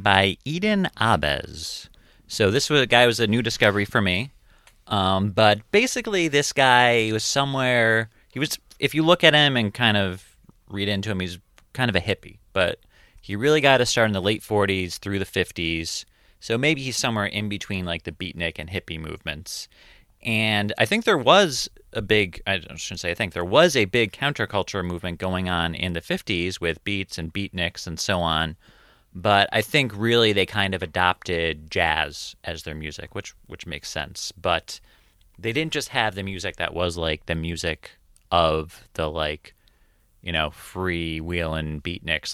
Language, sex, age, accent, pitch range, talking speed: English, male, 30-49, American, 85-110 Hz, 185 wpm